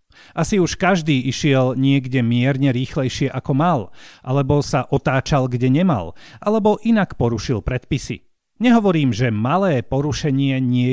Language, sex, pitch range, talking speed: Slovak, male, 130-180 Hz, 125 wpm